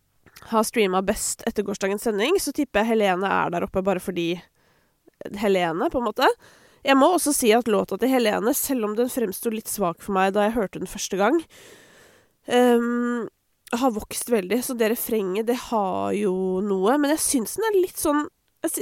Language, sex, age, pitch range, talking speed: English, female, 20-39, 195-265 Hz, 190 wpm